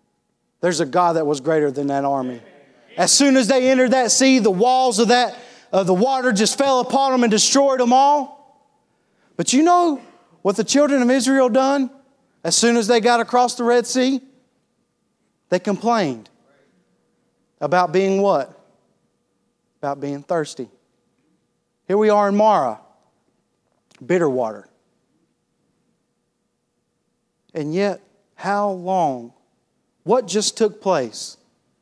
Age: 40-59